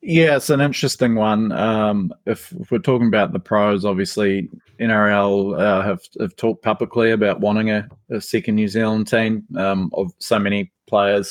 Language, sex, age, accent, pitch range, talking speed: English, male, 20-39, Australian, 95-110 Hz, 175 wpm